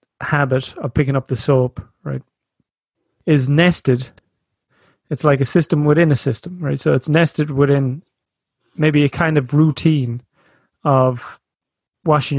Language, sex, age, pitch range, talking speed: English, male, 30-49, 125-150 Hz, 135 wpm